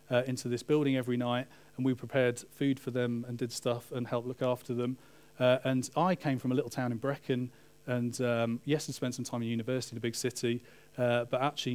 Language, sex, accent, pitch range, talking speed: English, male, British, 120-145 Hz, 235 wpm